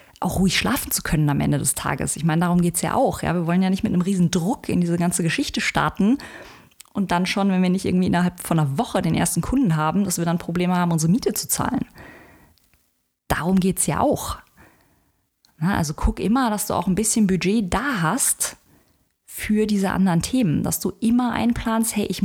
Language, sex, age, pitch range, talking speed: German, female, 20-39, 170-210 Hz, 215 wpm